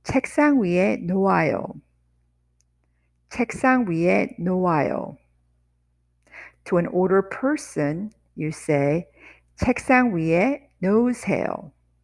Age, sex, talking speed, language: 50-69, female, 75 wpm, English